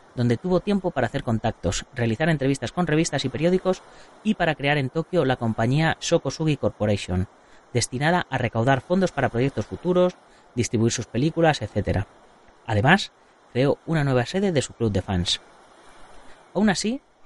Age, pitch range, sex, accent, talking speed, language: 30-49, 120-175 Hz, female, Spanish, 155 wpm, Spanish